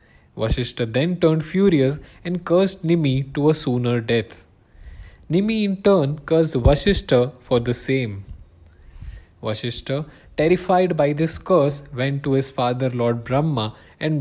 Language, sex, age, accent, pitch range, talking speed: English, male, 20-39, Indian, 115-165 Hz, 130 wpm